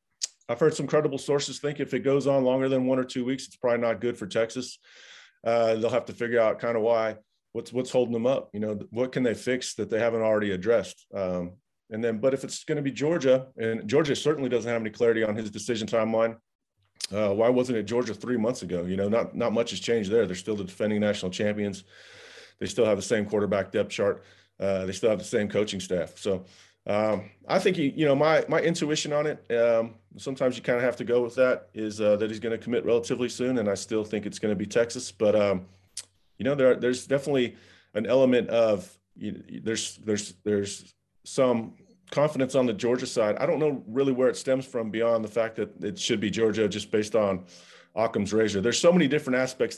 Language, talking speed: English, 235 wpm